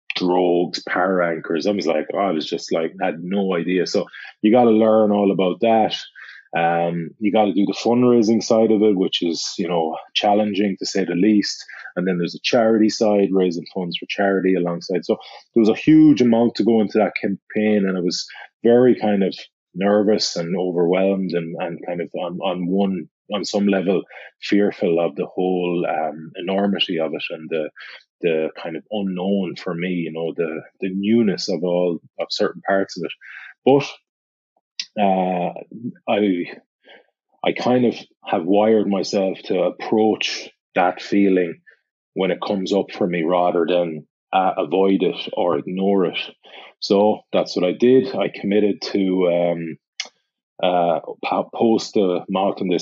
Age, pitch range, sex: 30-49, 90-105 Hz, male